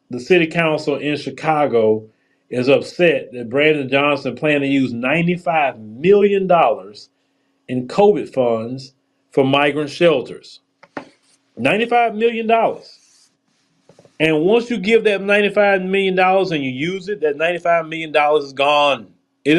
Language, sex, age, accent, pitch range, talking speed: English, male, 30-49, American, 135-180 Hz, 125 wpm